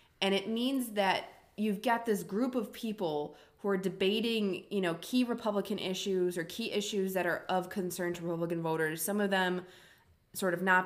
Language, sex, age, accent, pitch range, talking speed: English, female, 20-39, American, 170-210 Hz, 190 wpm